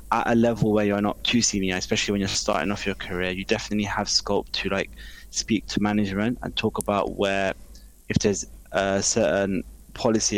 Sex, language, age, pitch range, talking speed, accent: male, English, 20-39, 95-105 Hz, 190 wpm, British